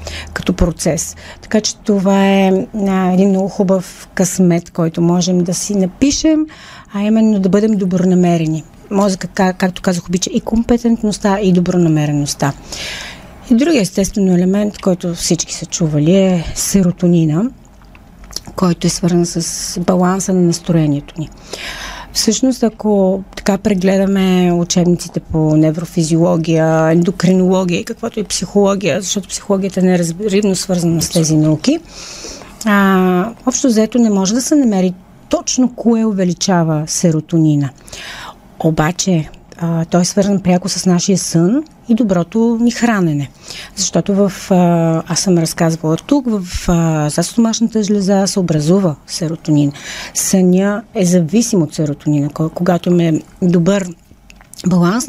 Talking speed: 125 wpm